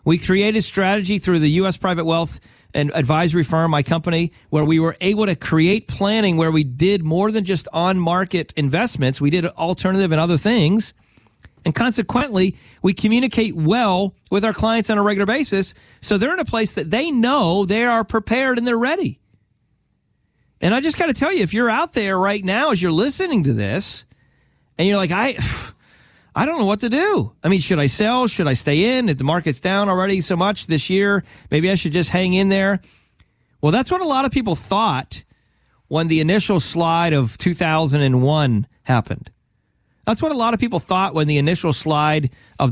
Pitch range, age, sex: 150-210 Hz, 40-59, male